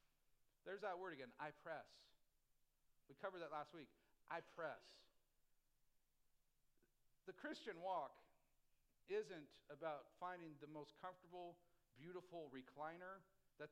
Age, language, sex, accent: 50-69, English, male, American